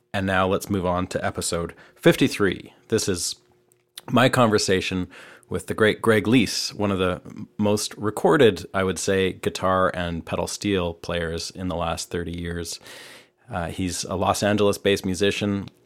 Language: English